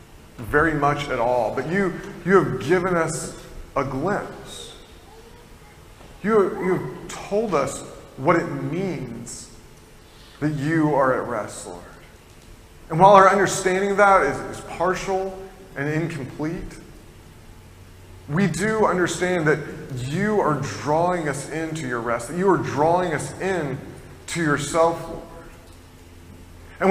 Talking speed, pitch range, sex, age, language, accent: 130 wpm, 115-175 Hz, male, 30-49, English, American